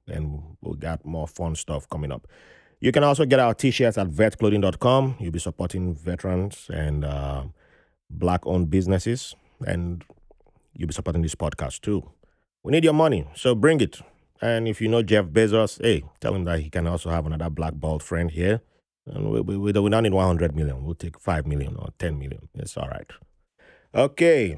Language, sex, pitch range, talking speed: English, male, 85-115 Hz, 190 wpm